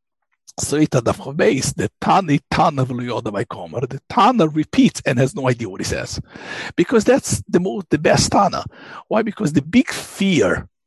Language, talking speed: English, 160 wpm